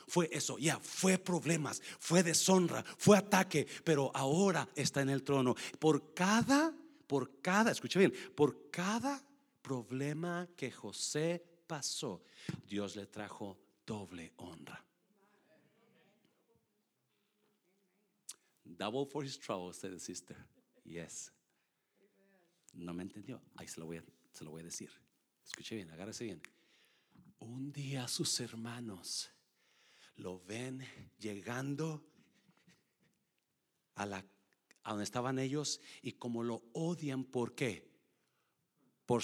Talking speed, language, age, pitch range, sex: 120 wpm, Spanish, 50-69, 110-170 Hz, male